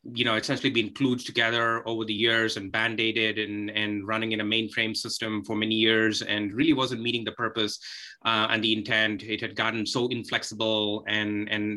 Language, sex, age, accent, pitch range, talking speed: English, male, 20-39, Indian, 110-120 Hz, 195 wpm